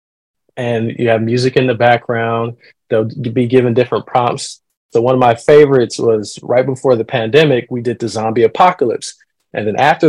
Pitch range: 110-130 Hz